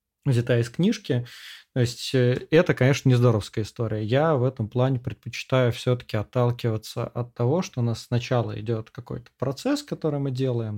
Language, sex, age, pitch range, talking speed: Russian, male, 20-39, 110-125 Hz, 155 wpm